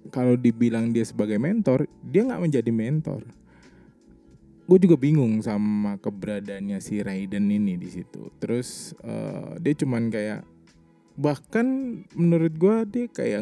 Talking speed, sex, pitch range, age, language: 130 wpm, male, 110-160 Hz, 20-39, Indonesian